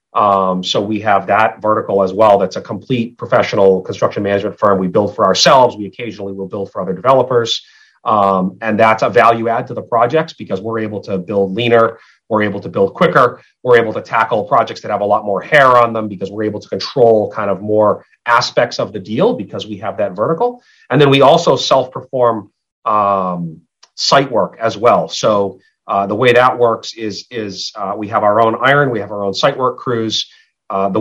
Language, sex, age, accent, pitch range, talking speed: English, male, 30-49, American, 100-130 Hz, 210 wpm